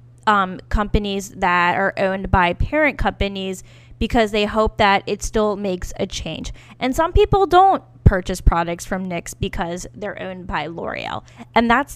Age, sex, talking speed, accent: 10-29, female, 160 wpm, American